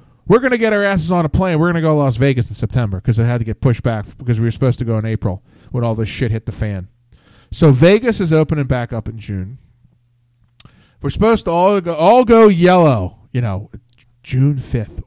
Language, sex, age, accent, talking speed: English, male, 40-59, American, 235 wpm